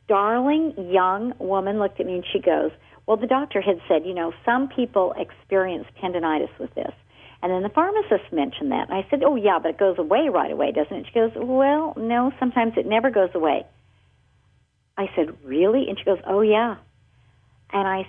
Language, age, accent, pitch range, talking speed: English, 50-69, American, 160-205 Hz, 200 wpm